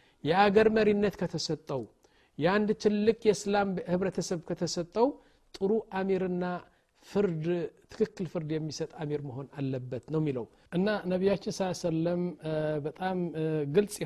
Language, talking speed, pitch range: Amharic, 105 wpm, 155-195 Hz